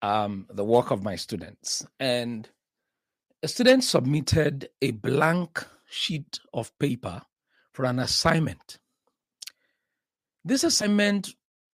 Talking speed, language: 100 wpm, English